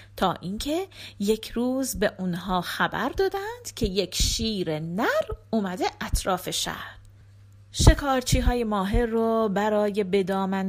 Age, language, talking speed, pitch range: 30-49, Persian, 110 wpm, 155-250 Hz